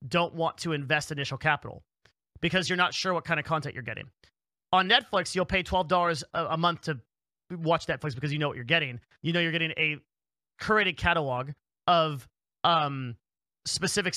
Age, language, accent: 30-49, English, American